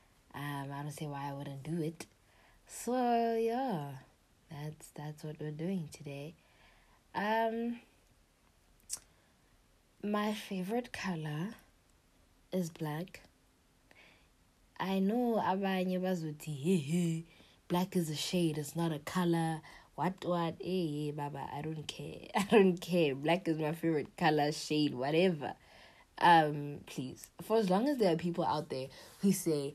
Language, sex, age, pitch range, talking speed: English, female, 20-39, 145-190 Hz, 125 wpm